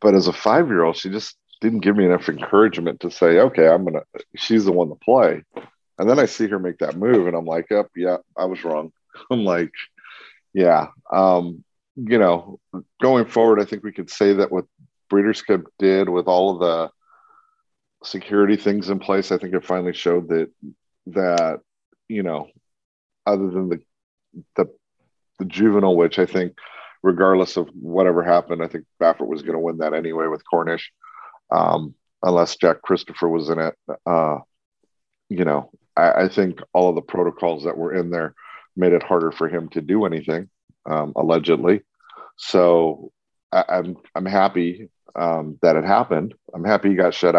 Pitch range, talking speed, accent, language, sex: 85-100 Hz, 180 wpm, American, English, male